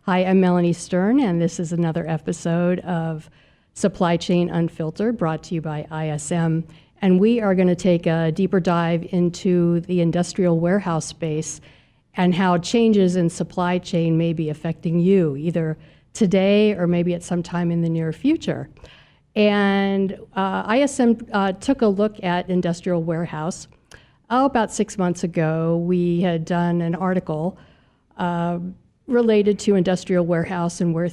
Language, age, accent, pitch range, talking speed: English, 50-69, American, 170-195 Hz, 150 wpm